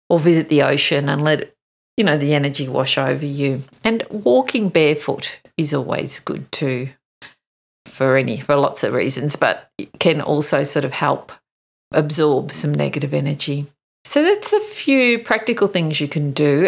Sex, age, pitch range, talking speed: female, 50-69, 150-230 Hz, 165 wpm